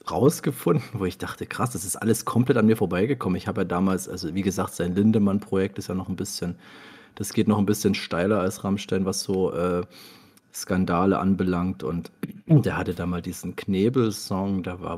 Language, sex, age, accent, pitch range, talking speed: German, male, 40-59, German, 90-105 Hz, 190 wpm